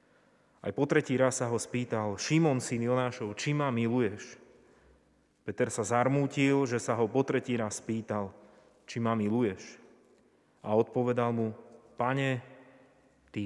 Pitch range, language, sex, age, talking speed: 105-130 Hz, Slovak, male, 30-49, 140 wpm